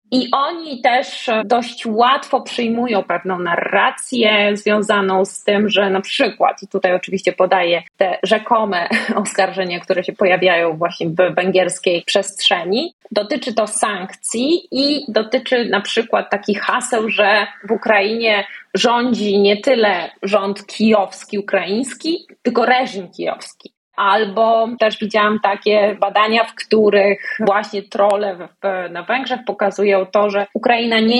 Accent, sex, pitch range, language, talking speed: native, female, 190-225 Hz, Polish, 125 wpm